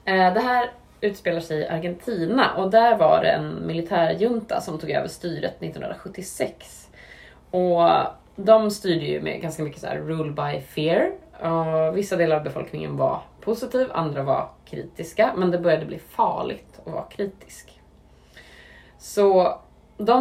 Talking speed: 145 wpm